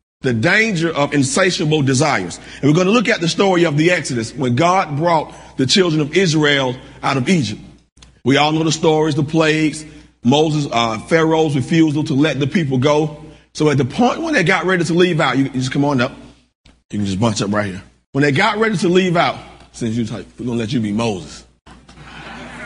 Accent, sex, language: American, male, English